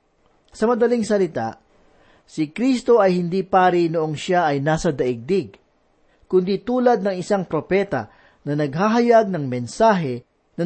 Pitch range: 155-215 Hz